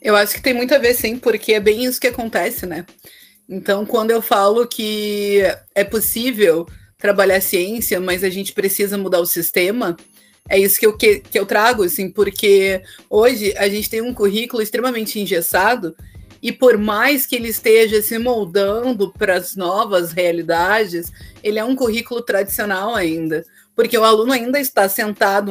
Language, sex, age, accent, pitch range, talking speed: Portuguese, female, 30-49, Brazilian, 190-235 Hz, 165 wpm